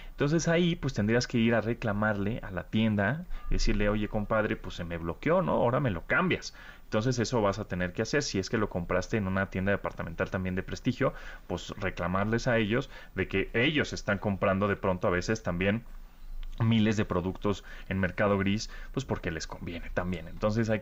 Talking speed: 200 wpm